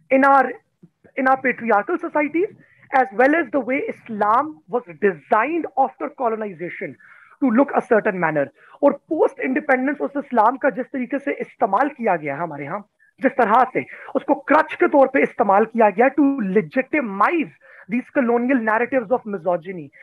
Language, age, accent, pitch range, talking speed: English, 30-49, Indian, 215-285 Hz, 125 wpm